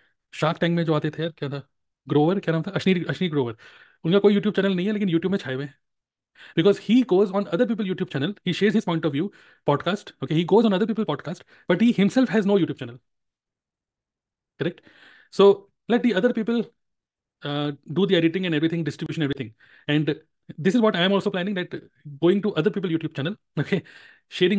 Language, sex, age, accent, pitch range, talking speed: Hindi, male, 30-49, native, 145-190 Hz, 205 wpm